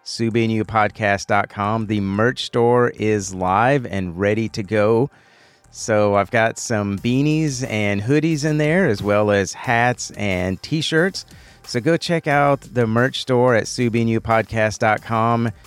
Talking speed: 135 wpm